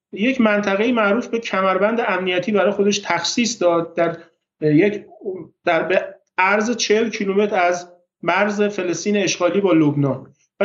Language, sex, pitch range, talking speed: Persian, male, 180-220 Hz, 130 wpm